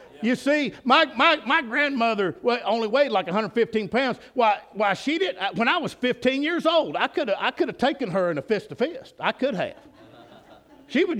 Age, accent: 50-69, American